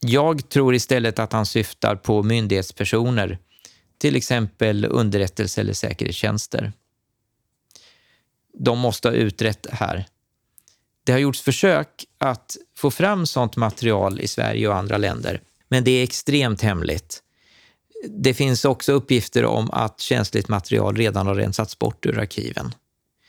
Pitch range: 105-130 Hz